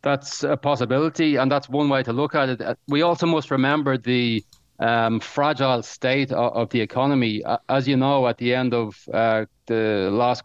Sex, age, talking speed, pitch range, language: male, 30-49, 185 wpm, 110-130 Hz, English